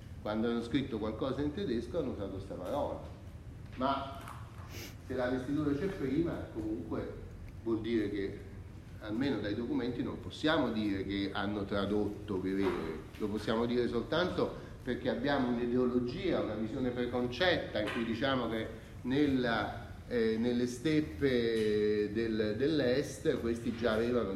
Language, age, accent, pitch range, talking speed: Italian, 40-59, native, 105-140 Hz, 125 wpm